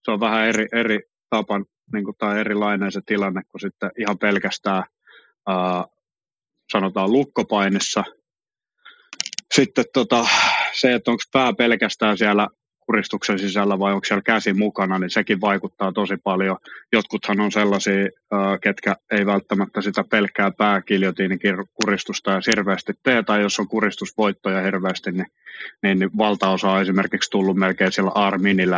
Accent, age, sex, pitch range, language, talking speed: native, 30-49, male, 95-105 Hz, Finnish, 140 wpm